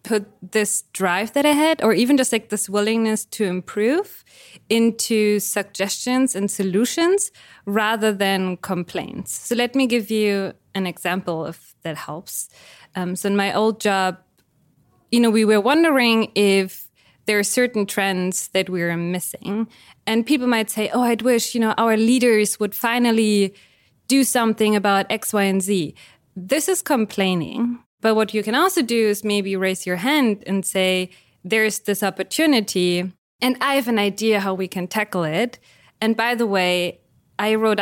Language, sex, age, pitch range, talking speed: English, female, 20-39, 185-225 Hz, 170 wpm